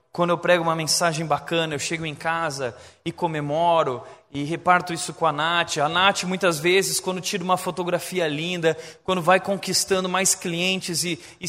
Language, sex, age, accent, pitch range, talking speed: Portuguese, male, 20-39, Brazilian, 170-210 Hz, 180 wpm